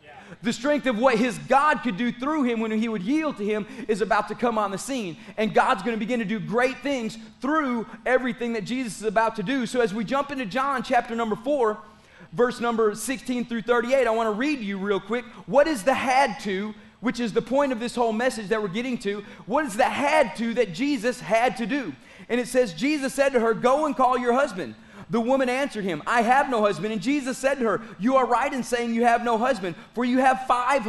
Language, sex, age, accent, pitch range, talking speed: English, male, 30-49, American, 220-260 Hz, 245 wpm